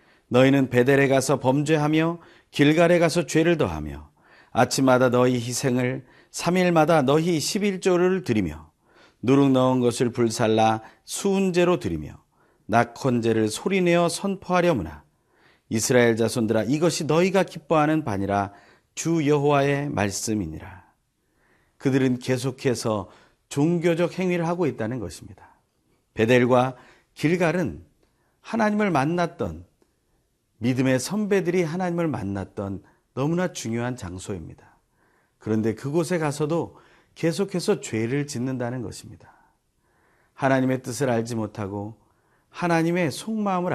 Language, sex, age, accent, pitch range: Korean, male, 40-59, native, 110-165 Hz